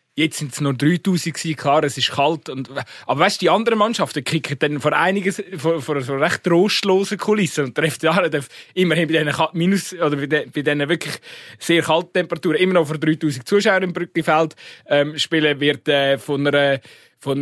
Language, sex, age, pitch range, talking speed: German, male, 20-39, 140-165 Hz, 195 wpm